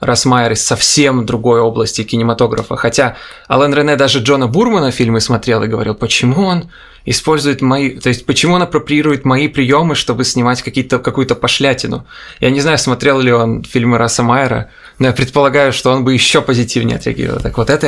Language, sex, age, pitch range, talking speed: Russian, male, 20-39, 125-150 Hz, 175 wpm